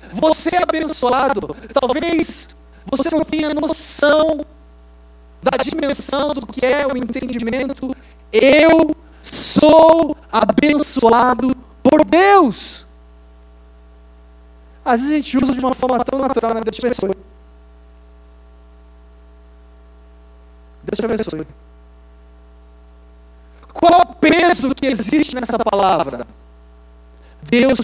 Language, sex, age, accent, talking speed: Portuguese, male, 40-59, Brazilian, 95 wpm